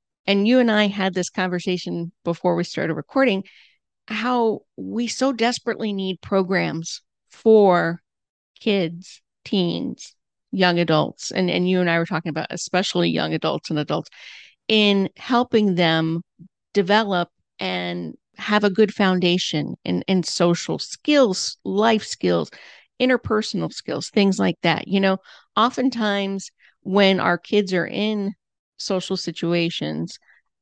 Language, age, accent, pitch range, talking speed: English, 50-69, American, 175-205 Hz, 125 wpm